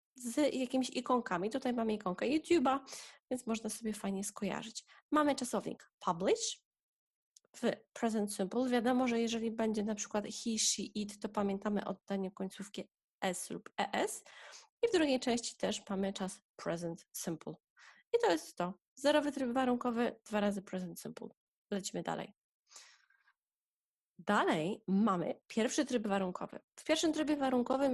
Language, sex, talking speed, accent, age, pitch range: Polish, female, 140 wpm, native, 20-39, 210-270 Hz